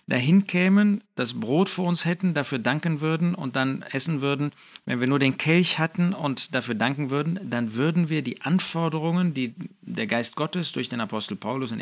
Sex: male